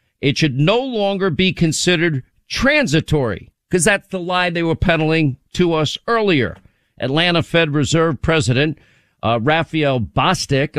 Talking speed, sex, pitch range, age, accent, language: 135 wpm, male, 135-175 Hz, 50-69, American, English